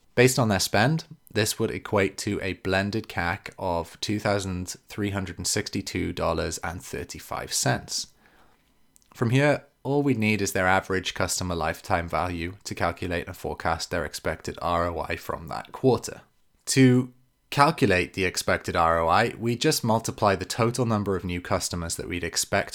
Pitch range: 90-115 Hz